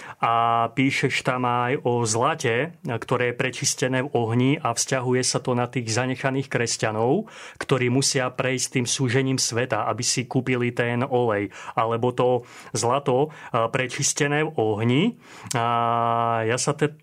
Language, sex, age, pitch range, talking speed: Slovak, male, 30-49, 120-140 Hz, 140 wpm